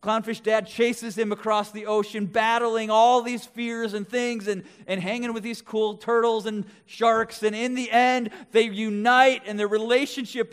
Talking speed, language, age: 175 wpm, English, 30-49